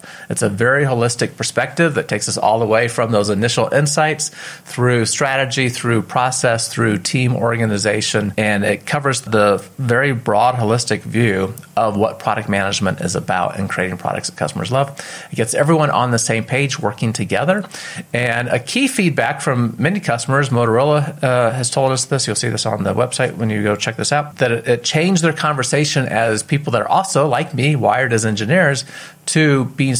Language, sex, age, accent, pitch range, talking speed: English, male, 30-49, American, 110-145 Hz, 185 wpm